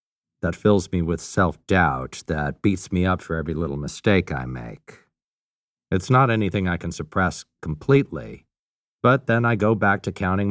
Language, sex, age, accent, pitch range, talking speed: English, male, 50-69, American, 90-120 Hz, 165 wpm